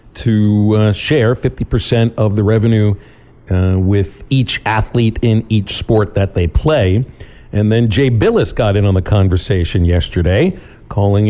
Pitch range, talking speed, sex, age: 105-130 Hz, 150 wpm, male, 50-69